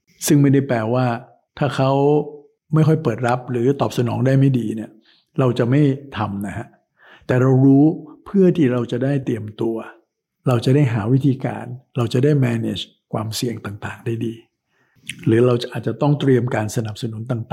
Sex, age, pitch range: male, 60-79, 110-135 Hz